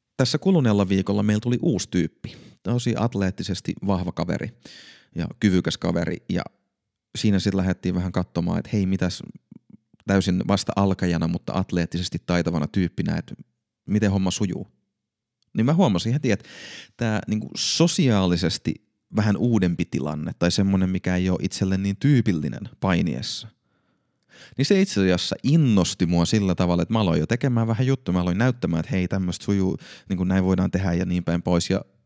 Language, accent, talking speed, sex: Finnish, native, 160 wpm, male